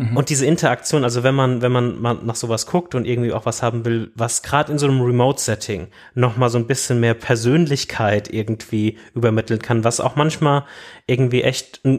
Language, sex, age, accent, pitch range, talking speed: German, male, 30-49, German, 110-125 Hz, 190 wpm